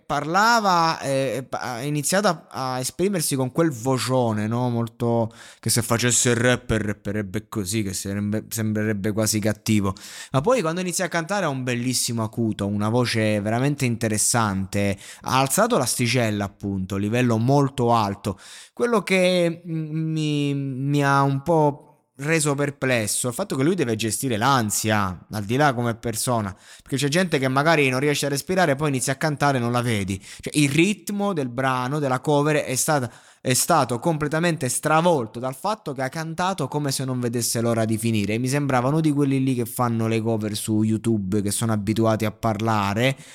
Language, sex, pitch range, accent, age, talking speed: Italian, male, 115-150 Hz, native, 20-39, 175 wpm